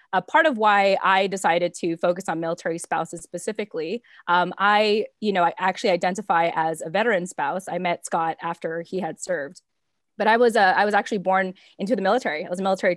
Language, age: English, 20-39